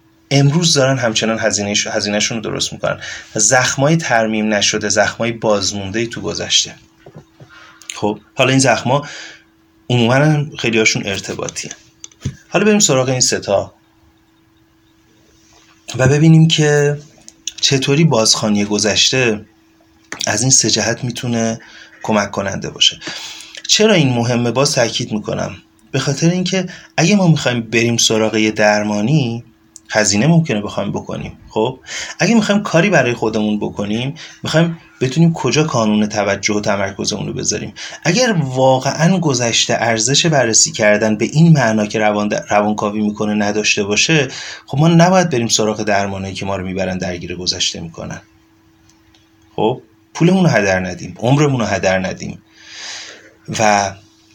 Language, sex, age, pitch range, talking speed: Persian, male, 30-49, 105-140 Hz, 125 wpm